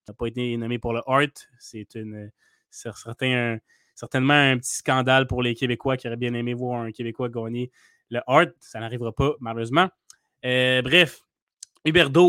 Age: 20-39